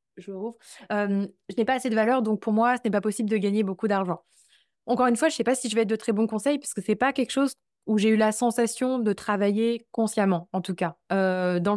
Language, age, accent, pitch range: French, 20-39, French, 195-245 Hz